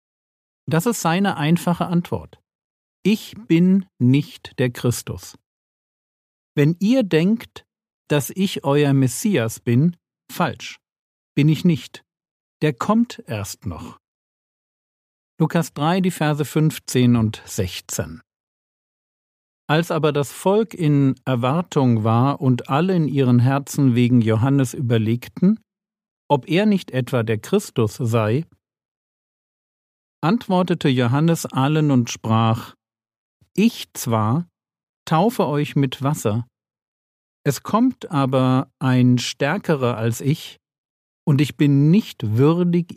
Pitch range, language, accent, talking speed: 120-165 Hz, German, German, 110 wpm